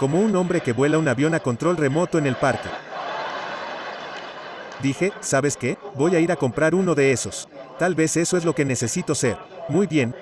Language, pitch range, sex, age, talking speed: English, 140-175 Hz, male, 40-59, 200 wpm